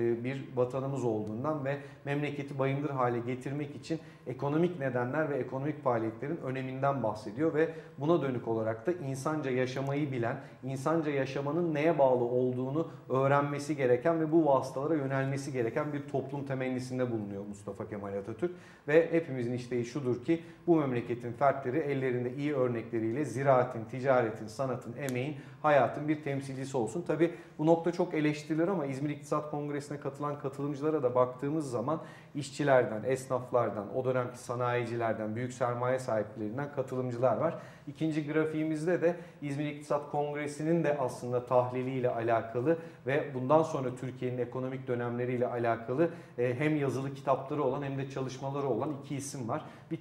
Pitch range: 125-150 Hz